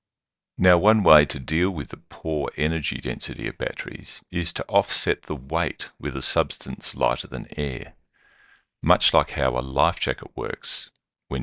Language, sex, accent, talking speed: English, male, Australian, 165 wpm